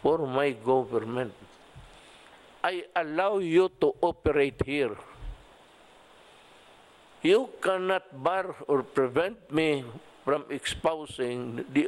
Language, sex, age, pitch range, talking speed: English, male, 50-69, 130-165 Hz, 90 wpm